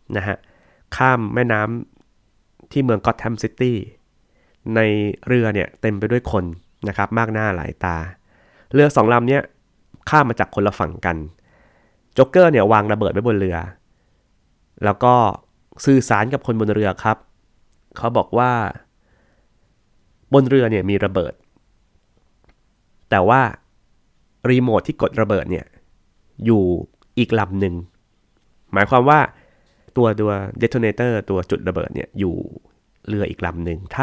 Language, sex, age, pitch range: Thai, male, 20-39, 95-120 Hz